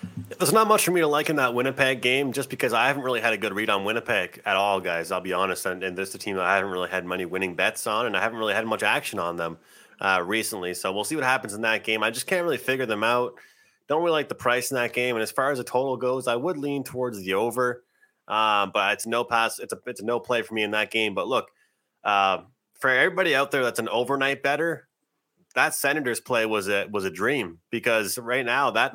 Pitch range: 100-125 Hz